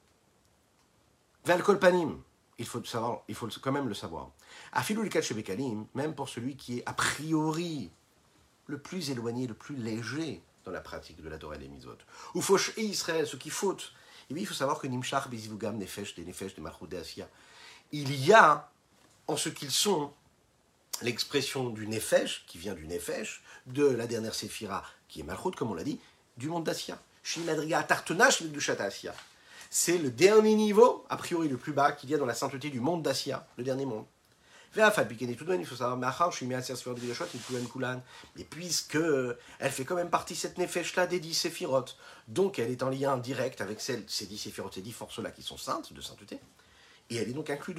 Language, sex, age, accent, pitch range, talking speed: French, male, 50-69, French, 120-170 Hz, 195 wpm